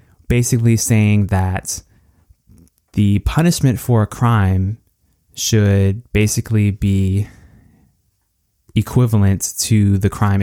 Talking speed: 85 wpm